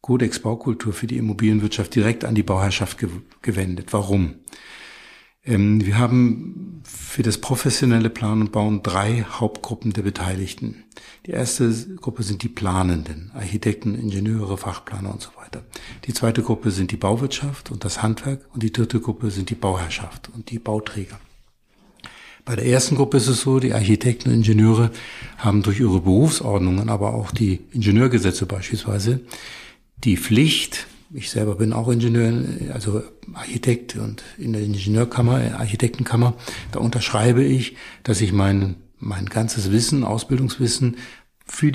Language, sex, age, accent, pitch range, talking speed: German, male, 60-79, German, 105-125 Hz, 140 wpm